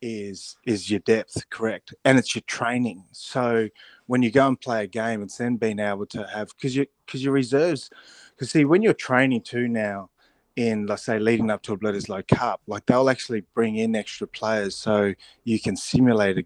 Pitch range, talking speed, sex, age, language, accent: 105-125 Hz, 205 wpm, male, 20-39, English, Australian